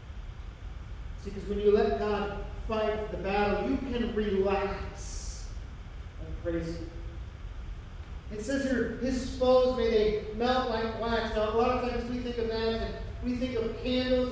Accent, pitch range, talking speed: American, 155-250 Hz, 160 wpm